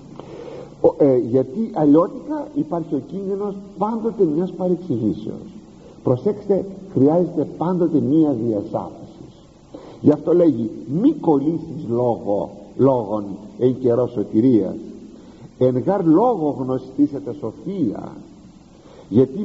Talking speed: 85 wpm